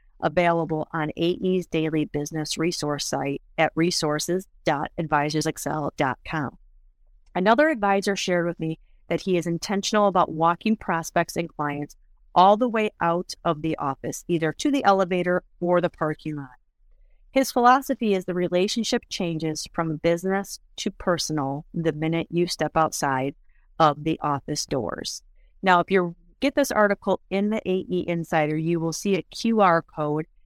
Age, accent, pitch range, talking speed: 30-49, American, 160-195 Hz, 145 wpm